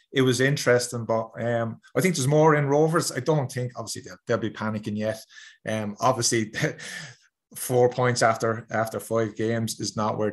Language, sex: English, male